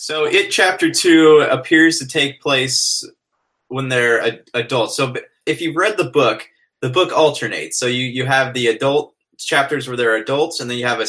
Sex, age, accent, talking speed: male, 20-39, American, 195 wpm